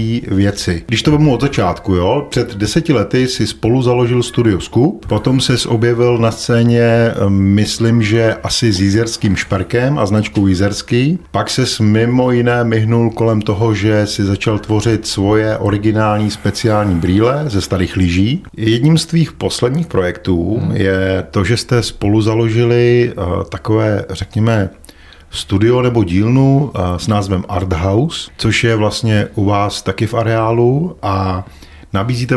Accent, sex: native, male